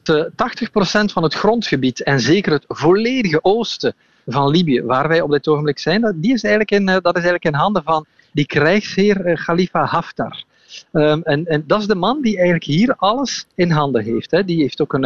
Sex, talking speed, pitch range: male, 200 wpm, 150-205 Hz